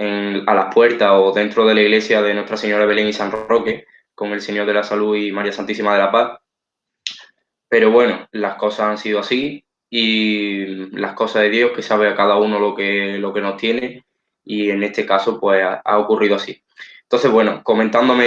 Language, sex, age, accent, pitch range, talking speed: Spanish, male, 10-29, Spanish, 105-115 Hz, 205 wpm